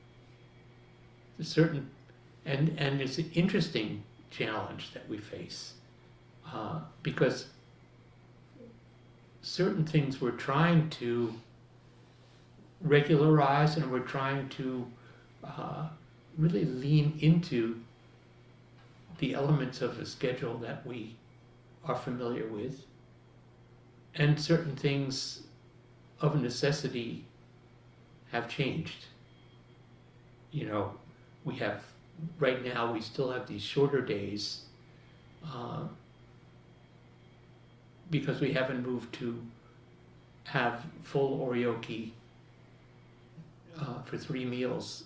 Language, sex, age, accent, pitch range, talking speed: English, male, 60-79, American, 120-150 Hz, 90 wpm